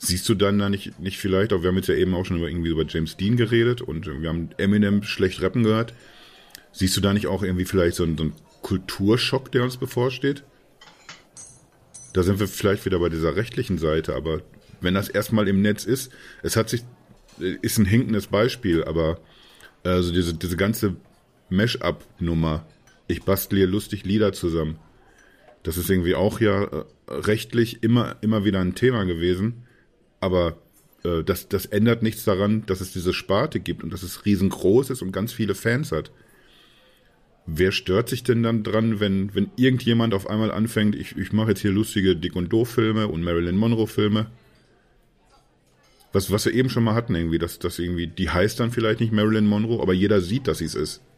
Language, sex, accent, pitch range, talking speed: German, male, German, 90-110 Hz, 190 wpm